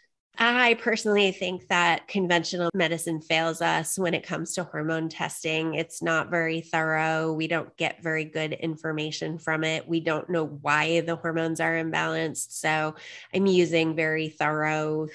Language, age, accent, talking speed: English, 20-39, American, 155 wpm